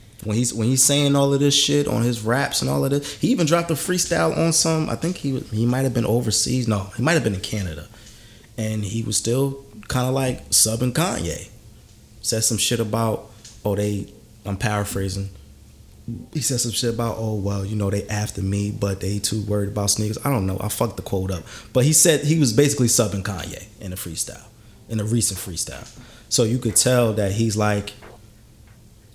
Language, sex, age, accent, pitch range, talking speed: English, male, 20-39, American, 100-115 Hz, 210 wpm